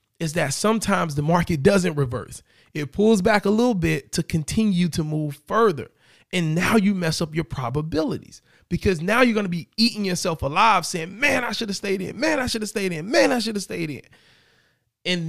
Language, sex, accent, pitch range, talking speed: English, male, American, 150-195 Hz, 210 wpm